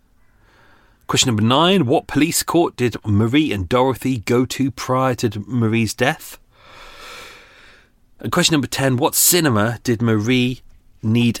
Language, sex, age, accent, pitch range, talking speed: English, male, 30-49, British, 105-135 Hz, 130 wpm